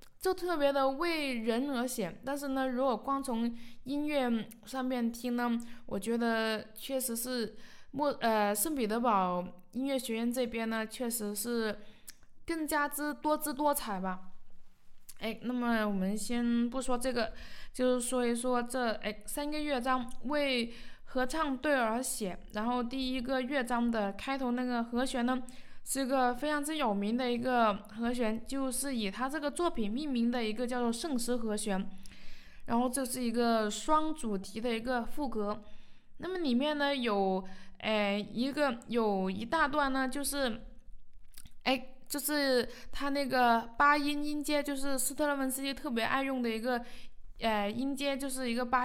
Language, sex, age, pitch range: Chinese, female, 20-39, 225-275 Hz